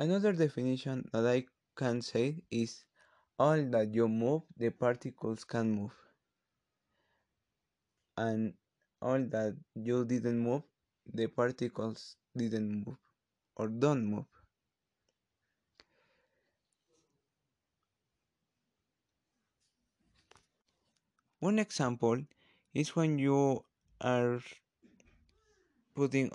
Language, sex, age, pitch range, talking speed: English, male, 20-39, 115-145 Hz, 80 wpm